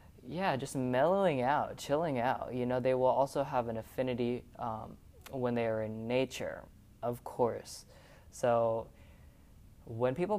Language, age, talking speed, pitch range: English, 20-39, 145 wpm, 115-130 Hz